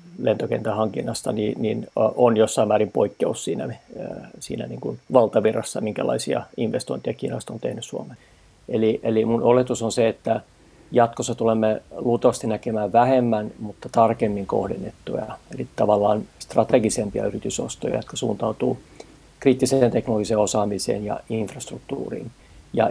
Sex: male